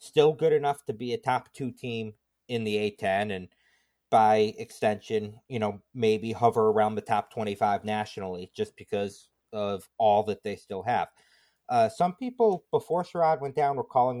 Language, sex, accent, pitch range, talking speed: English, male, American, 110-140 Hz, 175 wpm